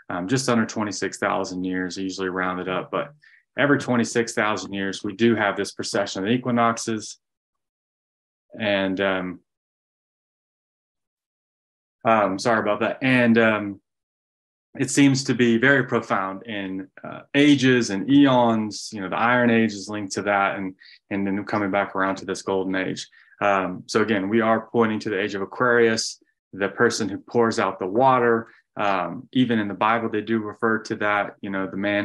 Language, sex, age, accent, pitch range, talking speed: English, male, 20-39, American, 100-115 Hz, 170 wpm